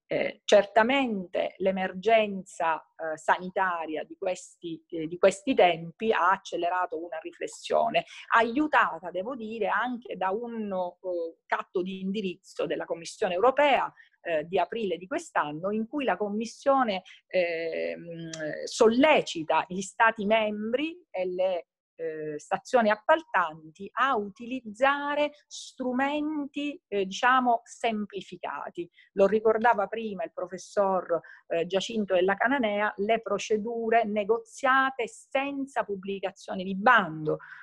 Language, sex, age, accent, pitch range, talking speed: English, female, 40-59, Italian, 180-240 Hz, 110 wpm